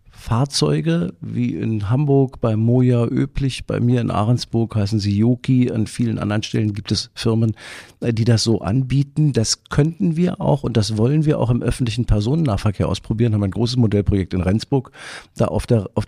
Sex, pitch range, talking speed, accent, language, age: male, 110-140 Hz, 180 wpm, German, German, 50-69